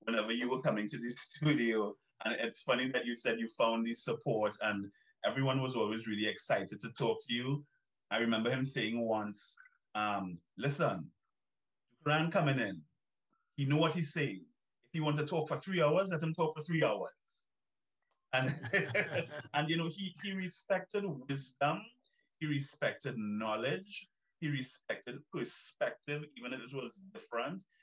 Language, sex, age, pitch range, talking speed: English, male, 30-49, 115-155 Hz, 160 wpm